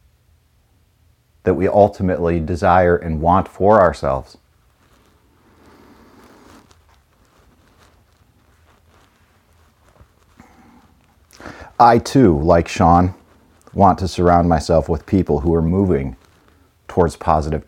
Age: 40-59